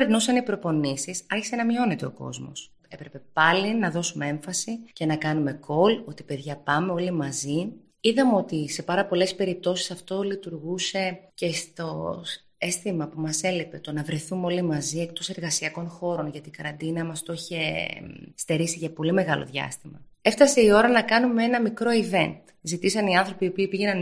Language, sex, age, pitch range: Greek, female, 20-39, 155-195 Hz